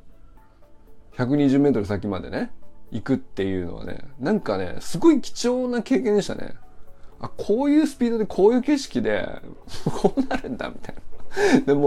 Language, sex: Japanese, male